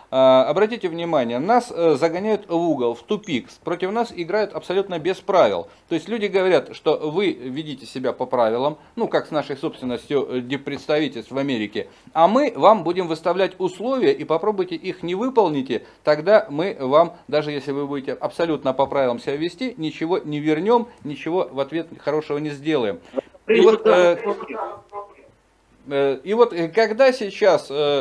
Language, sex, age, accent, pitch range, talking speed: Russian, male, 40-59, native, 150-220 Hz, 150 wpm